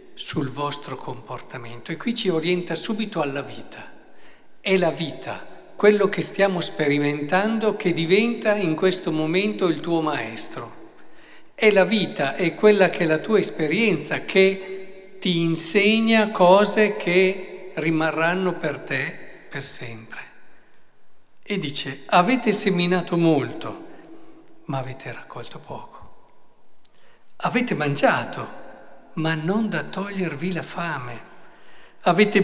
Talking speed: 115 wpm